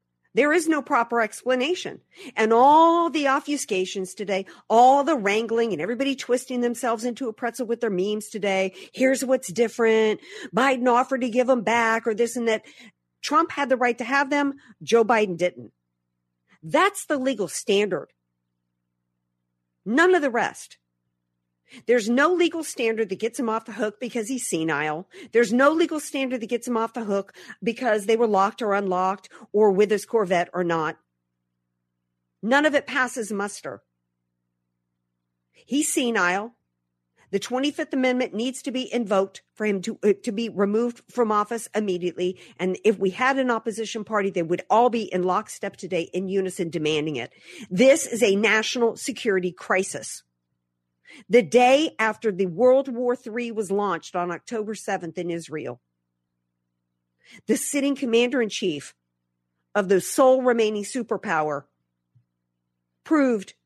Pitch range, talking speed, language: 160-245 Hz, 150 wpm, English